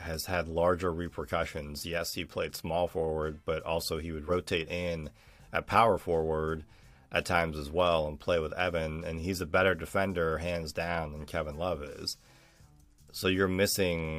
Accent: American